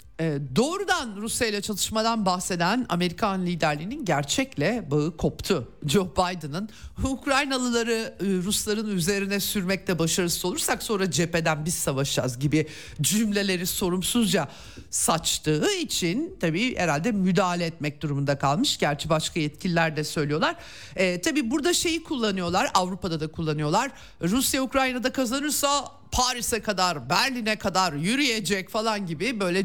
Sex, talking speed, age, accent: male, 115 wpm, 50-69, native